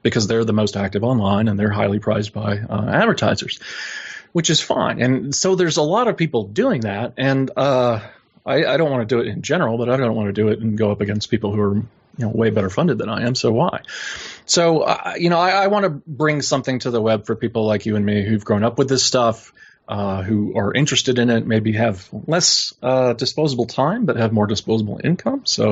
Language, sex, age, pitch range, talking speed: English, male, 30-49, 105-145 Hz, 240 wpm